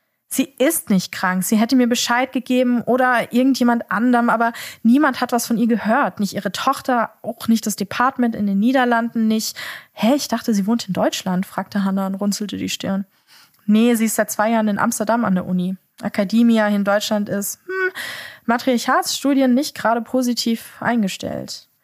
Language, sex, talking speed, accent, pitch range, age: German, female, 175 wpm, German, 195-245 Hz, 20-39